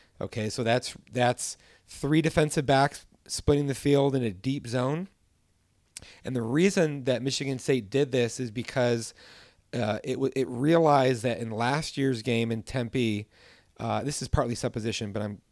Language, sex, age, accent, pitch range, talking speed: English, male, 30-49, American, 110-140 Hz, 160 wpm